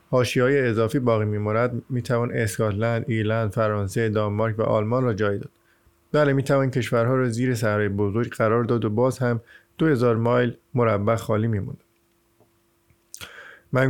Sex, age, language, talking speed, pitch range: male, 50-69, Persian, 150 wpm, 110-125 Hz